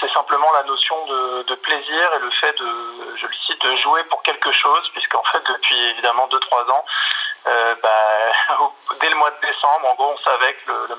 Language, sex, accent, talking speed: French, male, French, 215 wpm